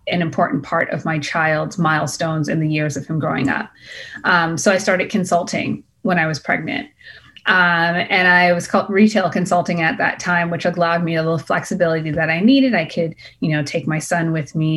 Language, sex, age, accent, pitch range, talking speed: English, female, 30-49, American, 160-200 Hz, 205 wpm